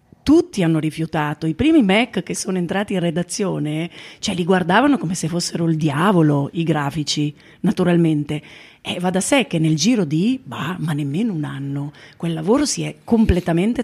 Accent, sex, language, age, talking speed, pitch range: native, female, Italian, 40-59, 180 wpm, 160-210 Hz